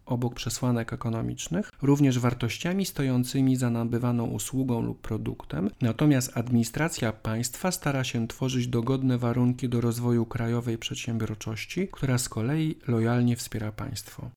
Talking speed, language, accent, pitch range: 120 wpm, Polish, native, 115-135 Hz